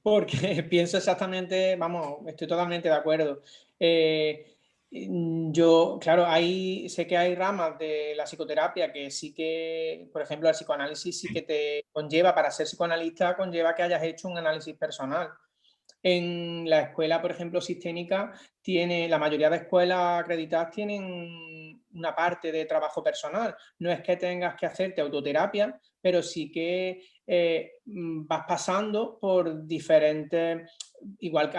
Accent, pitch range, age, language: Spanish, 160-185 Hz, 30-49, Spanish